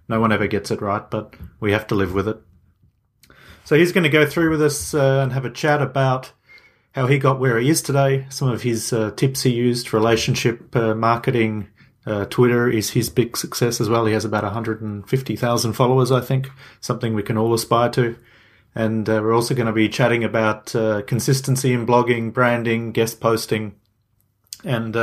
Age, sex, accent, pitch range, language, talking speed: 30-49, male, Australian, 110-130 Hz, English, 195 wpm